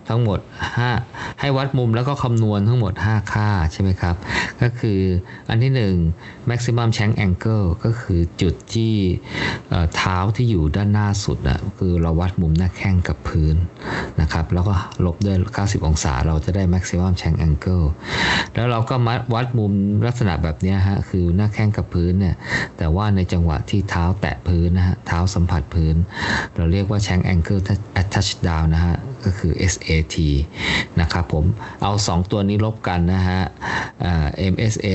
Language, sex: Thai, male